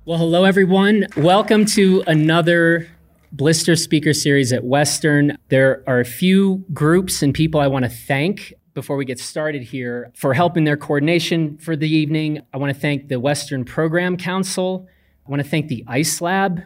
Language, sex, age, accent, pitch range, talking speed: English, male, 30-49, American, 125-165 Hz, 175 wpm